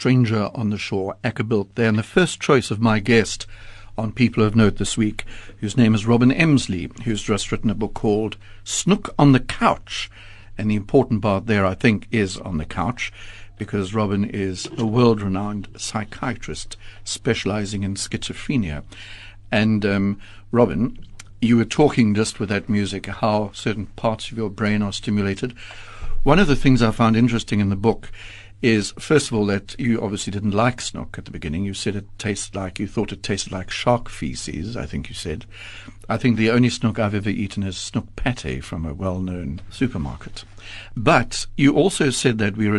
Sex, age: male, 60-79